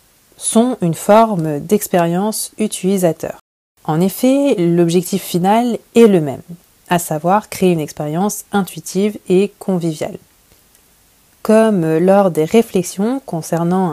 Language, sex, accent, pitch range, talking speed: French, female, French, 165-205 Hz, 110 wpm